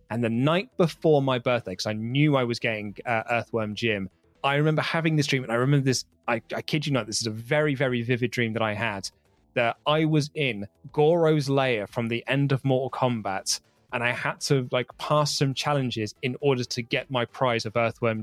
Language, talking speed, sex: English, 220 wpm, male